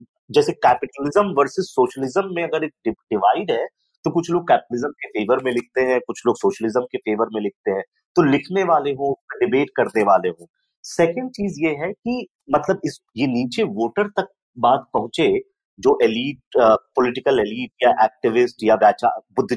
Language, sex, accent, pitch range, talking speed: Hindi, male, native, 150-235 Hz, 170 wpm